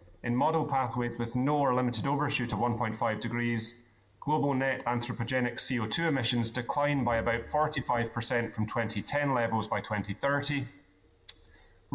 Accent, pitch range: British, 115-130 Hz